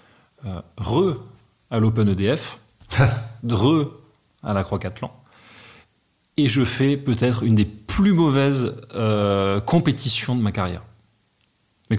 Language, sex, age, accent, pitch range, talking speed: French, male, 30-49, French, 100-120 Hz, 100 wpm